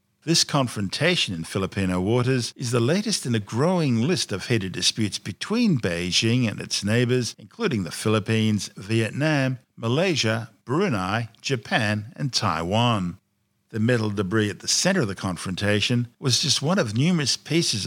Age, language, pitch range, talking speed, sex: 50-69, English, 100-130 Hz, 150 wpm, male